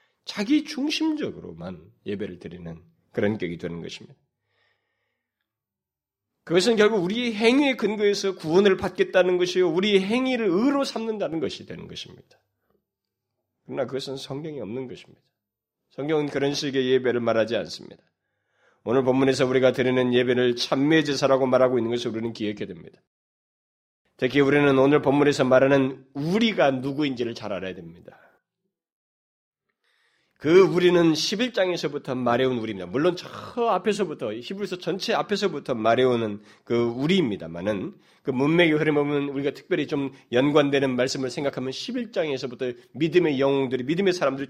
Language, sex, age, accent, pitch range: Korean, male, 30-49, native, 130-210 Hz